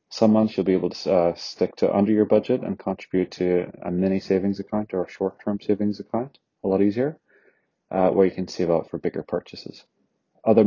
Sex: male